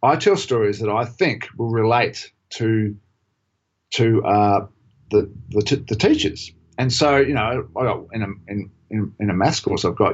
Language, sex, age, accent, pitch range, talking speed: English, male, 50-69, Australian, 105-130 Hz, 170 wpm